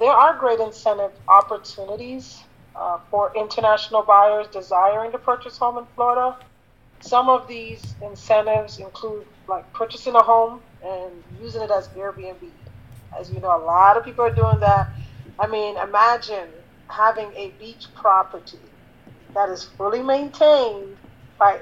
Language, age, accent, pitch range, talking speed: English, 40-59, American, 180-225 Hz, 145 wpm